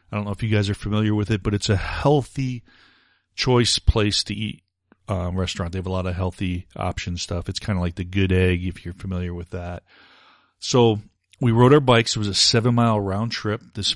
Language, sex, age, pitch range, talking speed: English, male, 40-59, 95-115 Hz, 230 wpm